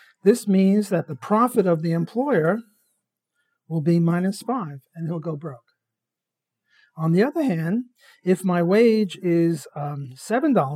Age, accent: 50-69, American